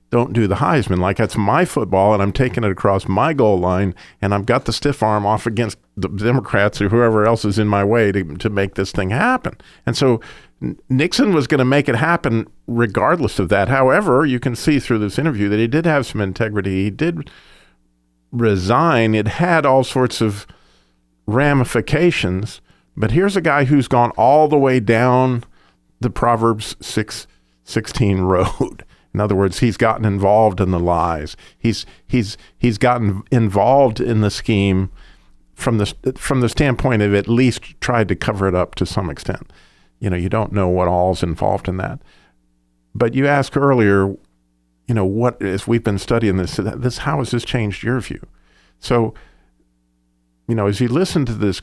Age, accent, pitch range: 50-69, American, 95-125 Hz